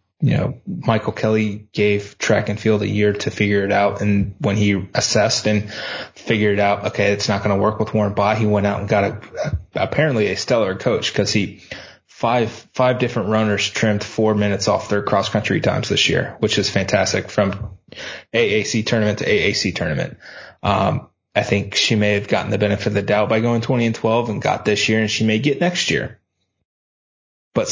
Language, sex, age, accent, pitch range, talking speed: English, male, 20-39, American, 100-115 Hz, 205 wpm